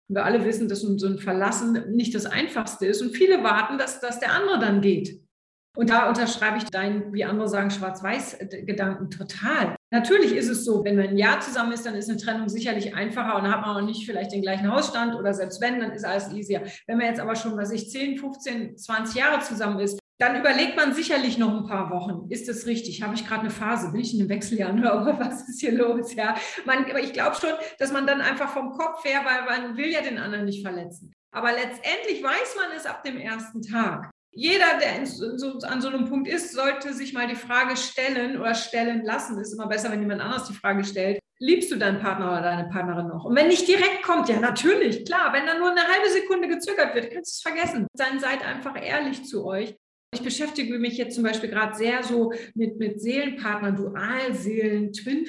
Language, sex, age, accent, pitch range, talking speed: German, female, 40-59, German, 215-270 Hz, 220 wpm